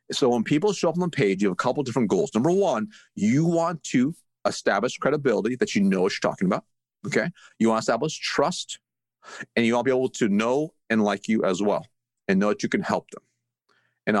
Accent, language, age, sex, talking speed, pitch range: American, English, 30-49, male, 235 wpm, 130-195 Hz